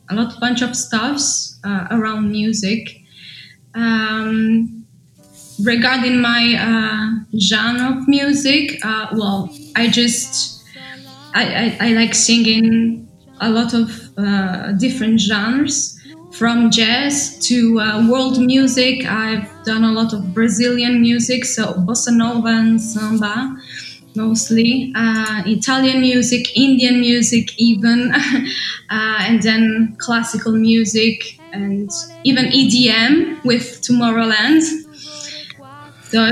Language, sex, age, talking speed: English, female, 20-39, 110 wpm